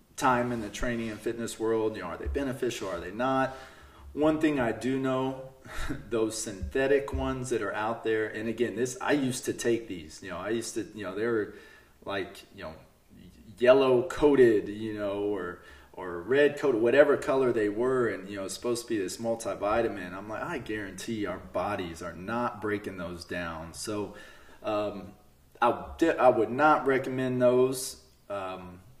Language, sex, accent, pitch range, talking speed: English, male, American, 100-130 Hz, 180 wpm